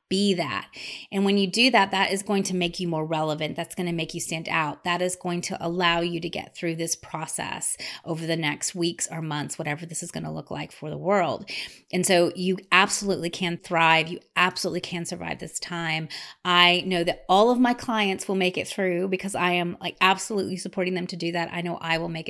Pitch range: 160-190 Hz